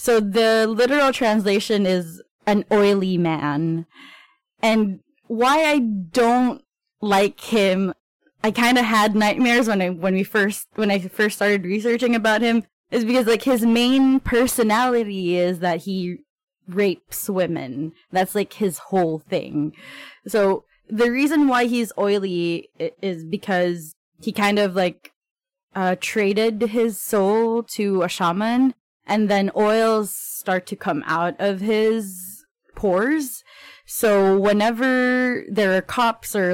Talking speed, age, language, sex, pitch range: 135 wpm, 20-39, English, female, 180-230 Hz